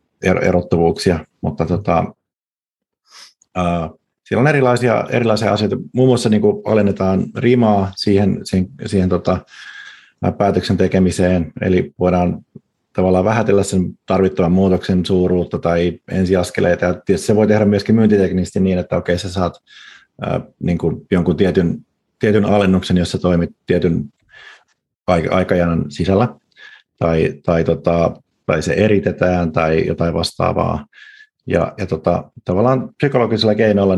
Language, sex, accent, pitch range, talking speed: Finnish, male, native, 90-105 Hz, 120 wpm